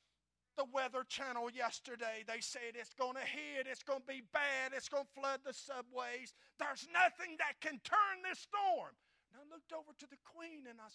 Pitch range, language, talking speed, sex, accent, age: 190-295 Hz, English, 205 wpm, male, American, 50-69